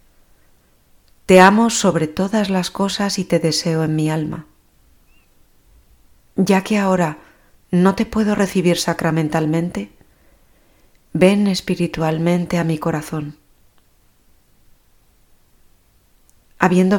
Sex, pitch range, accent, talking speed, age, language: female, 155-190 Hz, Spanish, 90 wpm, 30-49, Spanish